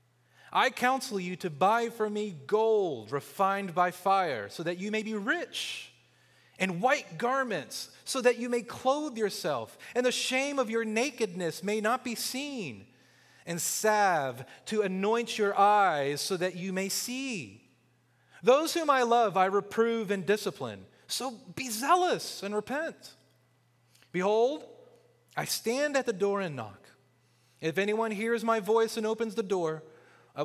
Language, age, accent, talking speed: English, 30-49, American, 155 wpm